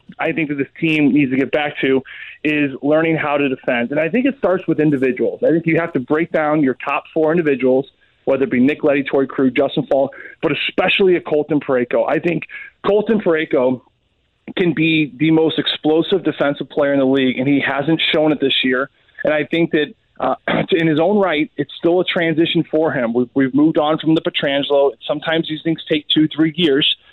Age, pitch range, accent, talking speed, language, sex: 30-49, 140-175 Hz, American, 215 wpm, English, male